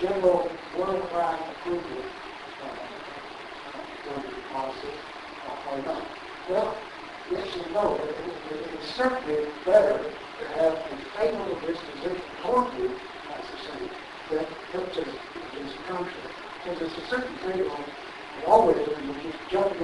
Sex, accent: male, American